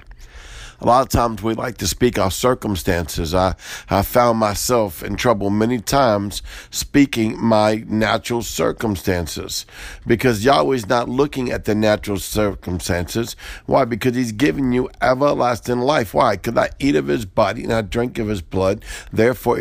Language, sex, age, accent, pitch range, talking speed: English, male, 50-69, American, 95-120 Hz, 155 wpm